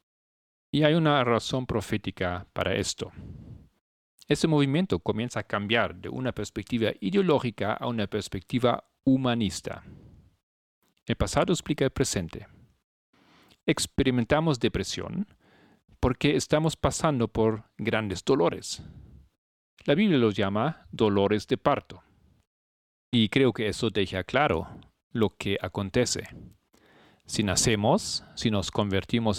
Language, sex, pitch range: Spanish, male, 100-135 Hz